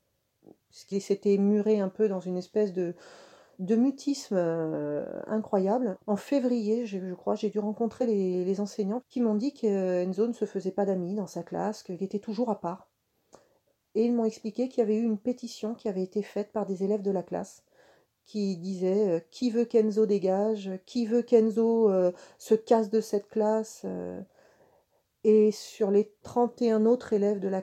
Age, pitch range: 40-59, 190-220 Hz